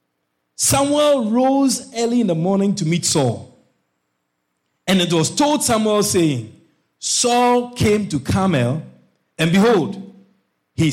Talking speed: 120 wpm